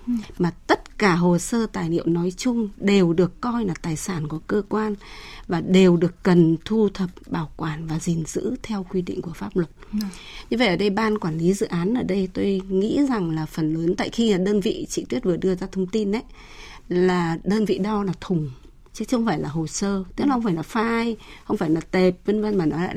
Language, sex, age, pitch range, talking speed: Vietnamese, female, 20-39, 175-225 Hz, 240 wpm